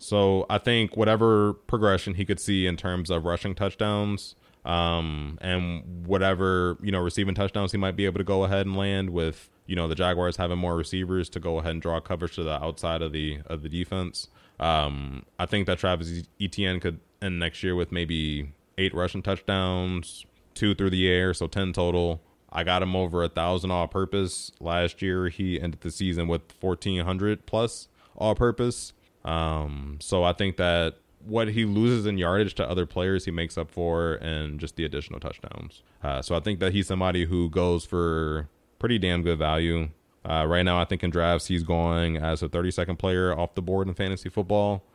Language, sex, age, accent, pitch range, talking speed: English, male, 20-39, American, 85-95 Hz, 195 wpm